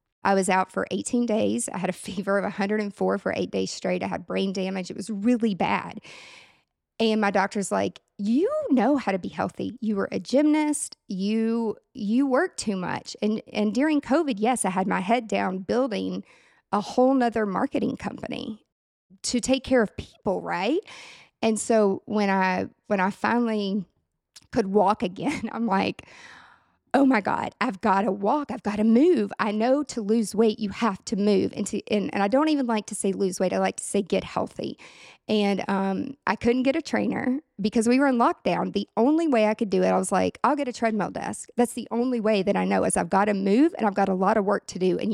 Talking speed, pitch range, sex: 215 wpm, 195-245 Hz, female